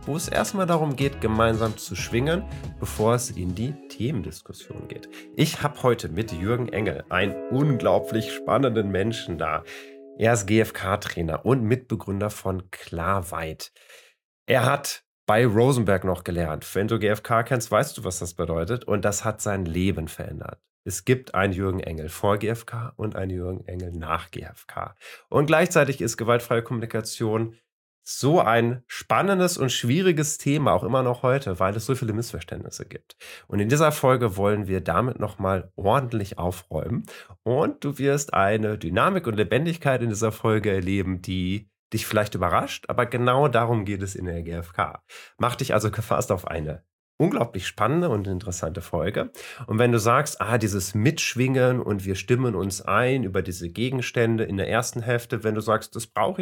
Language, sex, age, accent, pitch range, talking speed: German, male, 30-49, German, 95-125 Hz, 165 wpm